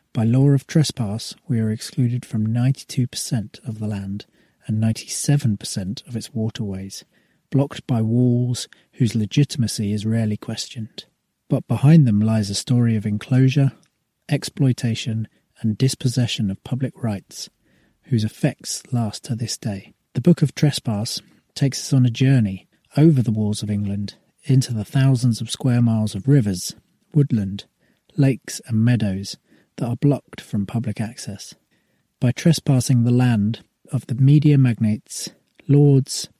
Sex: male